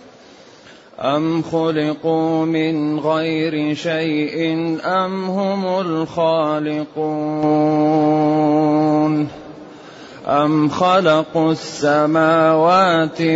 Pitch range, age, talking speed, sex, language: 150-160 Hz, 30-49, 50 wpm, male, Arabic